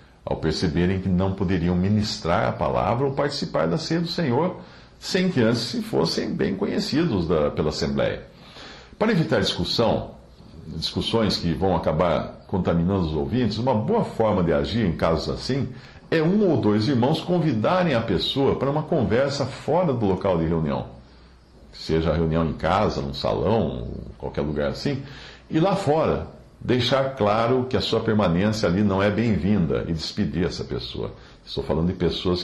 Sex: male